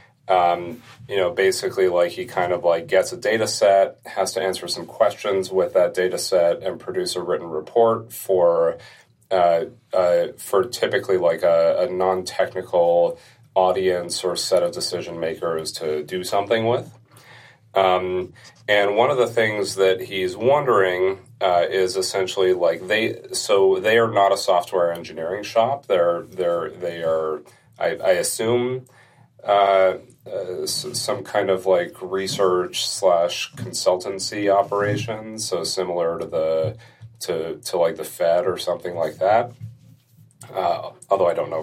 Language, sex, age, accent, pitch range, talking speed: English, male, 30-49, American, 95-120 Hz, 150 wpm